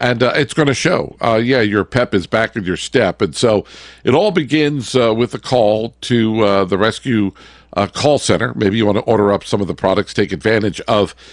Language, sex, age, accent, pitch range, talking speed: English, male, 50-69, American, 105-140 Hz, 235 wpm